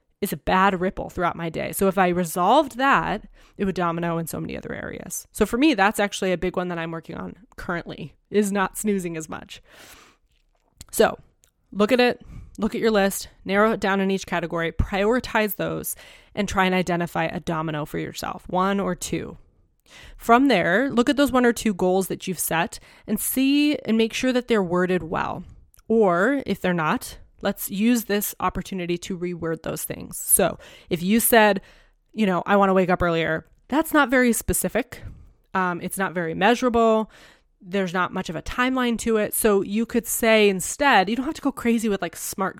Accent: American